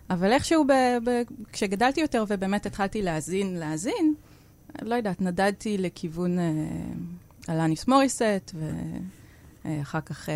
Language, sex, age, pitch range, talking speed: Hebrew, female, 30-49, 155-205 Hz, 120 wpm